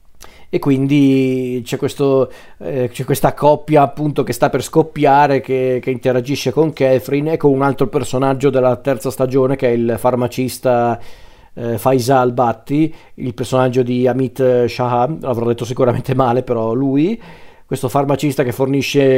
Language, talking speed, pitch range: Italian, 150 wpm, 125-145 Hz